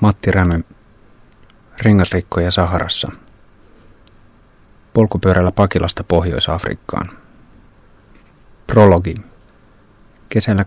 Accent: native